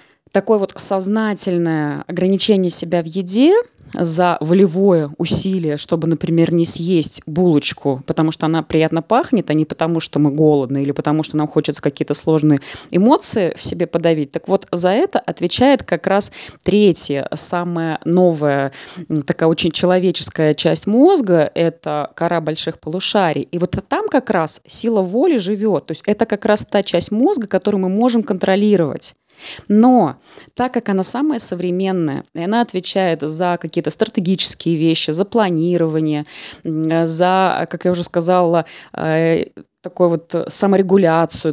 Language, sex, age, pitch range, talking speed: Russian, female, 20-39, 160-195 Hz, 145 wpm